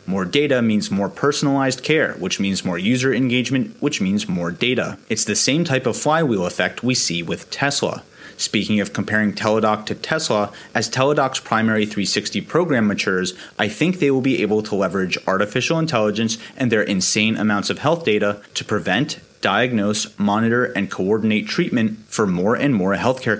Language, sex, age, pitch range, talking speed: English, male, 30-49, 105-135 Hz, 170 wpm